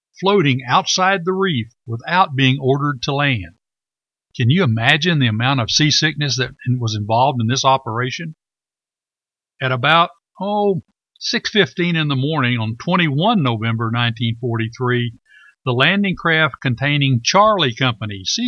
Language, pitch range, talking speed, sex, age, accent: English, 125-170 Hz, 130 wpm, male, 60-79, American